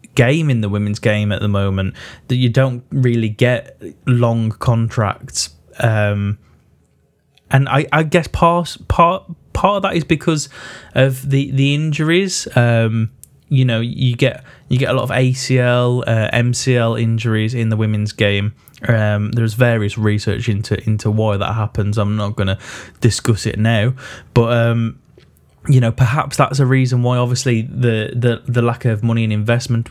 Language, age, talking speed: English, 10-29, 165 wpm